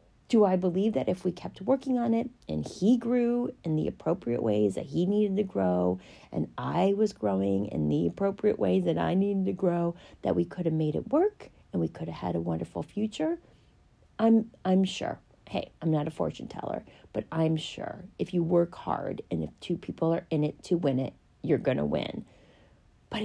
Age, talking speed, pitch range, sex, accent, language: 40-59, 210 wpm, 155-235 Hz, female, American, English